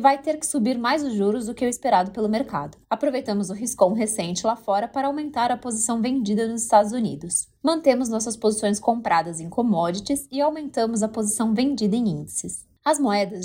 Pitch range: 200-255 Hz